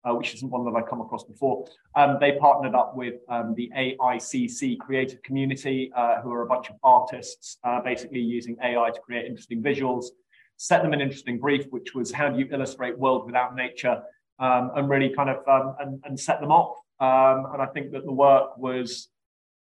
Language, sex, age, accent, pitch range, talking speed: English, male, 20-39, British, 125-150 Hz, 205 wpm